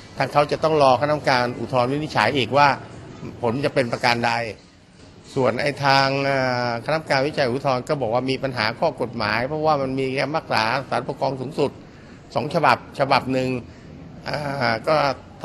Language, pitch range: Thai, 120-140 Hz